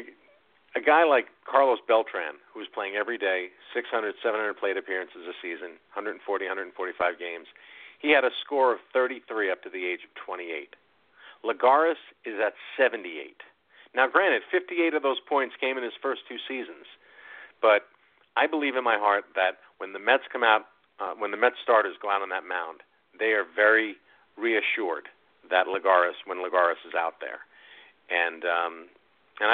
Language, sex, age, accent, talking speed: English, male, 50-69, American, 170 wpm